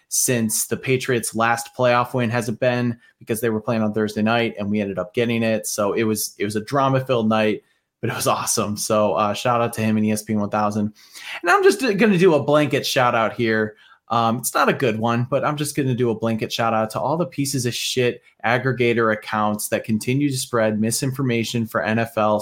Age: 20-39